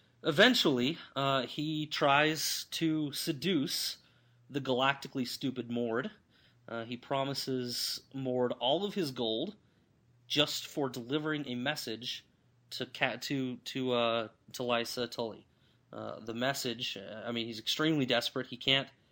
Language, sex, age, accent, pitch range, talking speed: English, male, 30-49, American, 120-140 Hz, 130 wpm